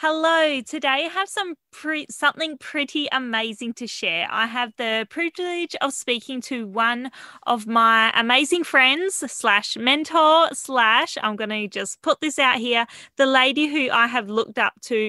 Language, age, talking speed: English, 20-39, 165 wpm